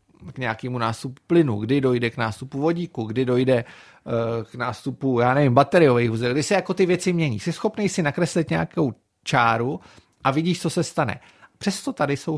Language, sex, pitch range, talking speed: Czech, male, 115-160 Hz, 180 wpm